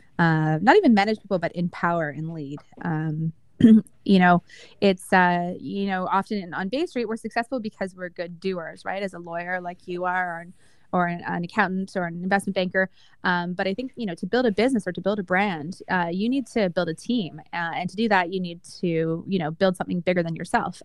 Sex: female